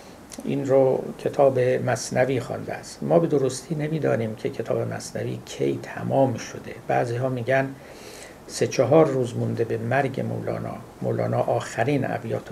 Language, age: Persian, 60-79